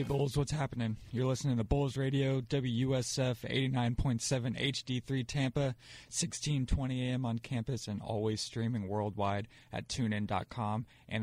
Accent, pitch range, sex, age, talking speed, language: American, 110-130 Hz, male, 20-39, 125 wpm, English